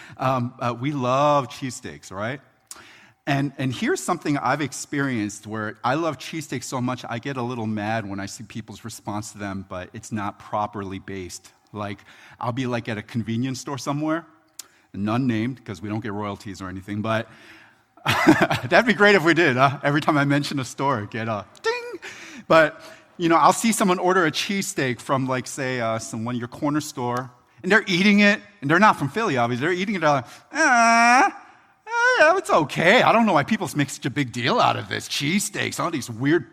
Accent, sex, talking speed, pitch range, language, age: American, male, 205 wpm, 115-160 Hz, English, 30-49